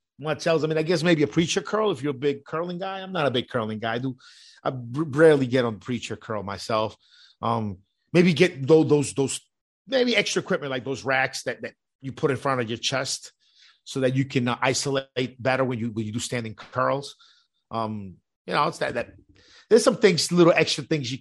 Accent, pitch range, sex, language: American, 120-160 Hz, male, English